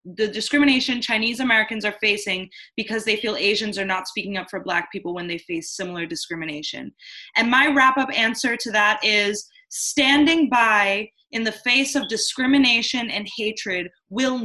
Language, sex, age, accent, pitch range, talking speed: English, female, 20-39, American, 215-275 Hz, 160 wpm